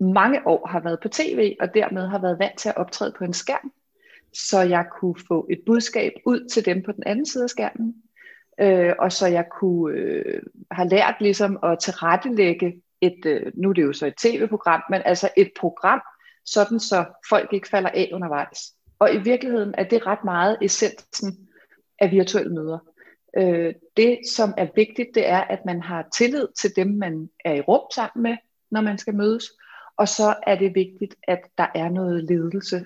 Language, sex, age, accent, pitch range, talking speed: Danish, female, 30-49, native, 170-215 Hz, 195 wpm